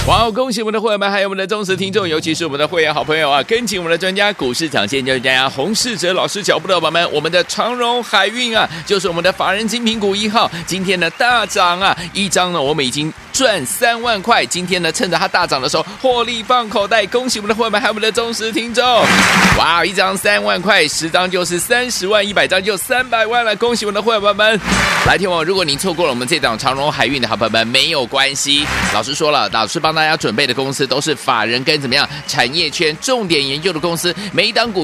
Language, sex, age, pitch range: Chinese, male, 30-49, 165-215 Hz